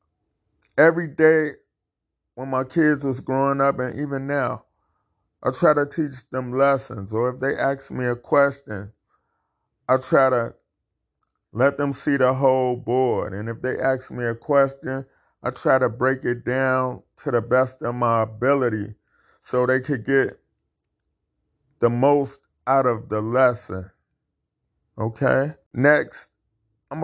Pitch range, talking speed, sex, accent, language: 115-140 Hz, 145 wpm, male, American, English